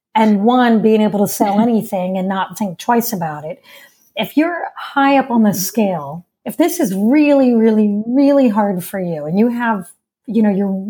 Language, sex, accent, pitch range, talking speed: English, female, American, 205-260 Hz, 195 wpm